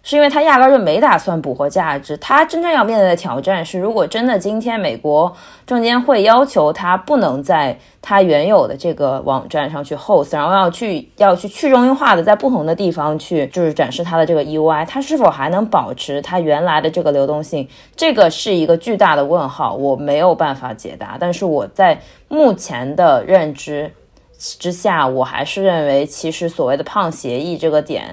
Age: 20-39